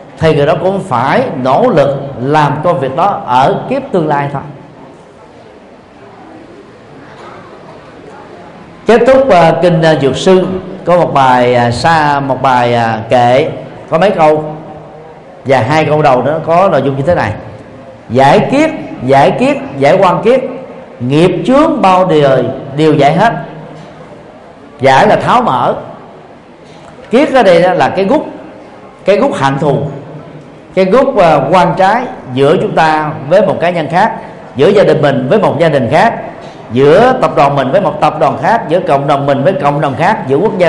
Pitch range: 140-195 Hz